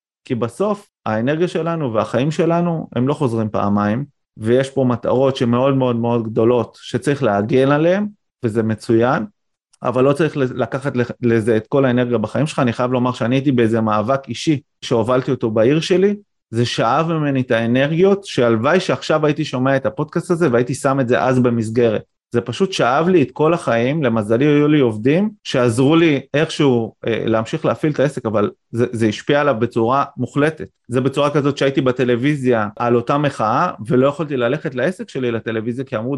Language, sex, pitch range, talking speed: Hebrew, male, 120-145 Hz, 175 wpm